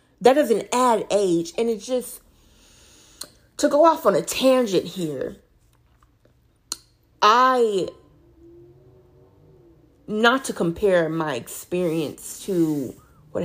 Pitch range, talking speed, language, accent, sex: 145-190 Hz, 100 wpm, English, American, female